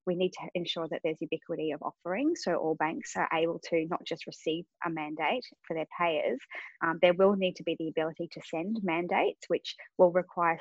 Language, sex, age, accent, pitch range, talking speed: English, female, 20-39, Australian, 165-195 Hz, 210 wpm